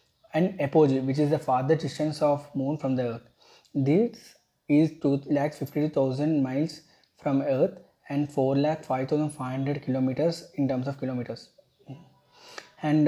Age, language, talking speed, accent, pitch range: 20-39, English, 120 wpm, Indian, 130-150 Hz